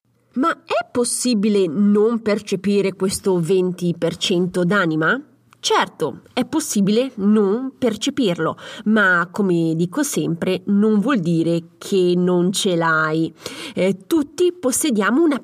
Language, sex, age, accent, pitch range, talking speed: Italian, female, 30-49, native, 180-240 Hz, 105 wpm